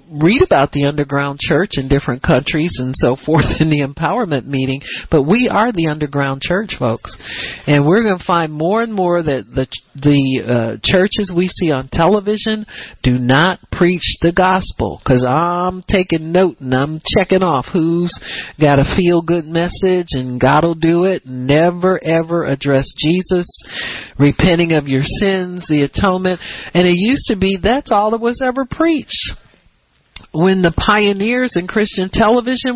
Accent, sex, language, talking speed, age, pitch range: American, male, English, 165 wpm, 50-69, 135-195 Hz